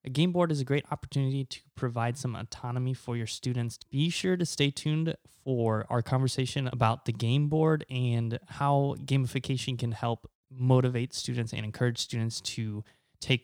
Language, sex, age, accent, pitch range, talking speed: English, male, 20-39, American, 120-150 Hz, 170 wpm